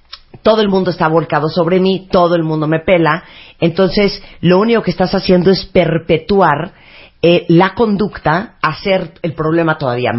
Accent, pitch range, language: Mexican, 155-205 Hz, Spanish